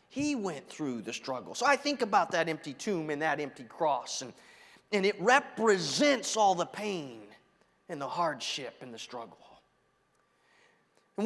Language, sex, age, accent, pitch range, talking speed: English, male, 30-49, American, 110-170 Hz, 160 wpm